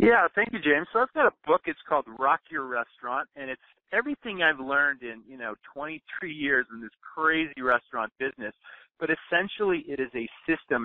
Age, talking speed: 40-59, 195 wpm